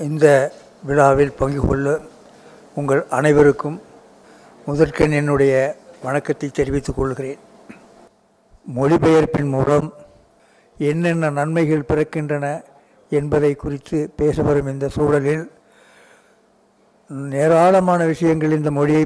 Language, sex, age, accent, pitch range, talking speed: Tamil, male, 60-79, native, 145-165 Hz, 80 wpm